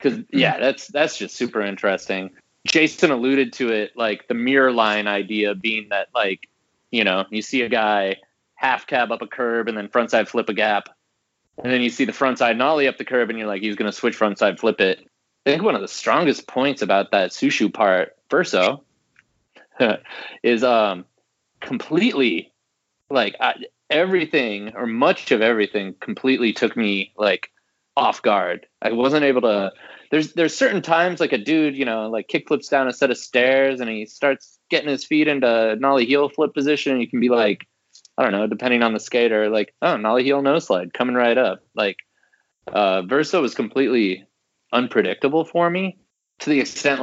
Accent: American